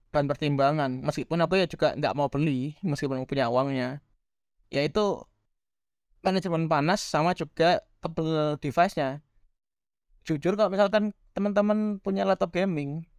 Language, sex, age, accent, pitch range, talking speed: Indonesian, male, 20-39, native, 145-190 Hz, 120 wpm